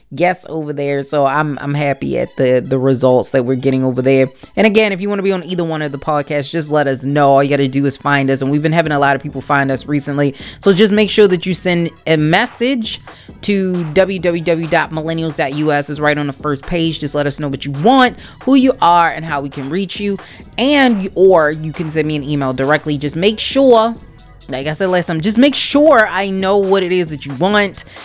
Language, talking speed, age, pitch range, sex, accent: English, 240 wpm, 20-39, 140-180 Hz, female, American